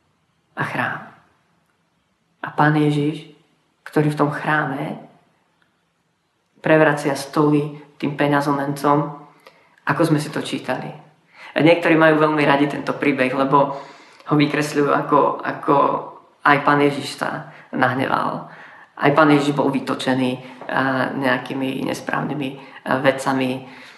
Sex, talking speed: female, 105 wpm